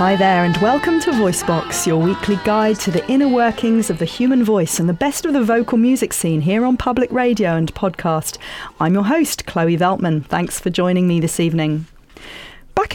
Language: English